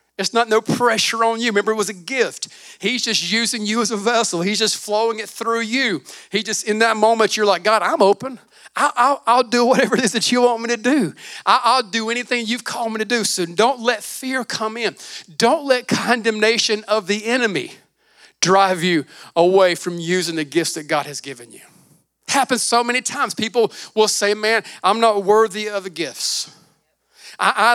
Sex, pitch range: male, 200-245 Hz